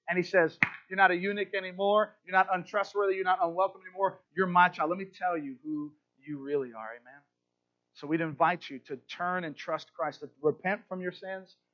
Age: 30-49